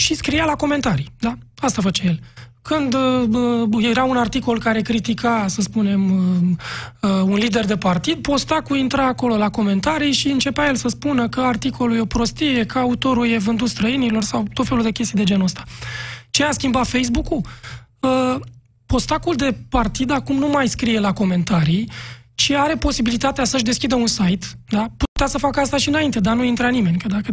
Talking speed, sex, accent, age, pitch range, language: 185 wpm, male, native, 20-39, 205-265 Hz, Romanian